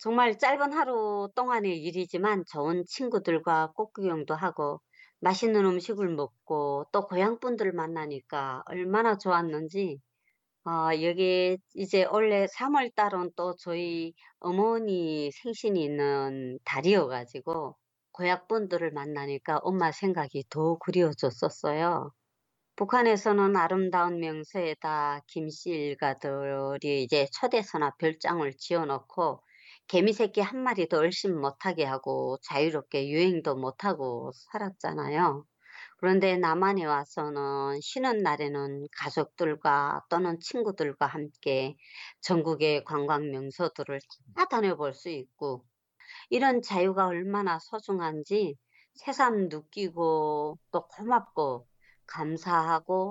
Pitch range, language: 145-200 Hz, Korean